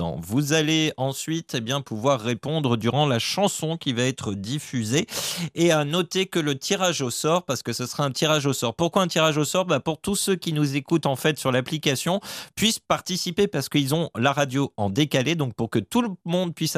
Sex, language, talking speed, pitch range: male, French, 220 wpm, 130-175 Hz